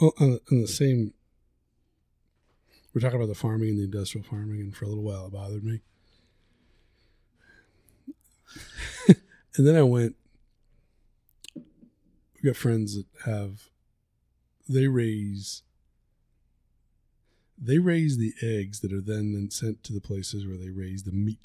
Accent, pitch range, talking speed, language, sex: American, 100-120 Hz, 135 wpm, English, male